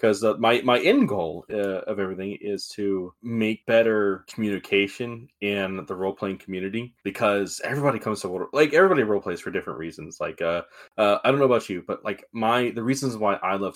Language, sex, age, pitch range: English, male, 20-39, 95-115 Hz